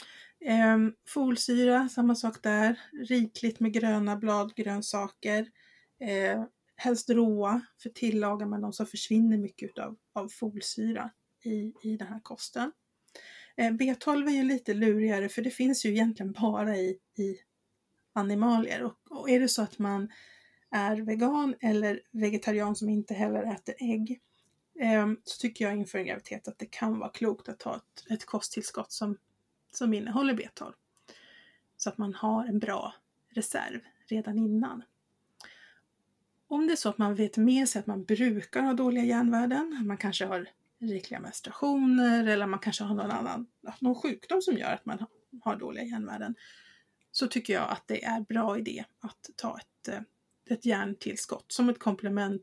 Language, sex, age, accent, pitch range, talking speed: English, female, 30-49, Swedish, 210-245 Hz, 160 wpm